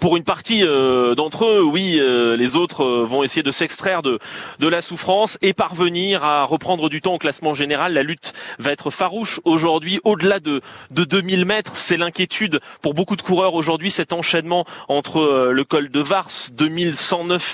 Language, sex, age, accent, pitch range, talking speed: French, male, 30-49, French, 155-195 Hz, 190 wpm